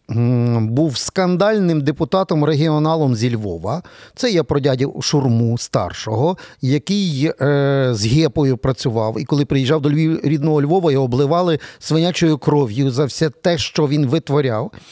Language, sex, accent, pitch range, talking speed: Ukrainian, male, native, 130-165 Hz, 125 wpm